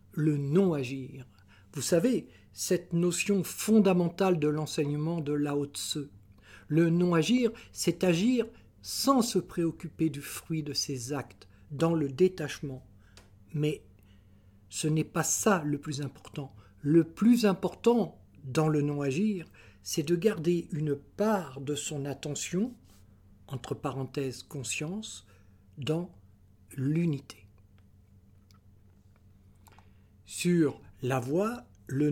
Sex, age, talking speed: male, 60-79, 110 wpm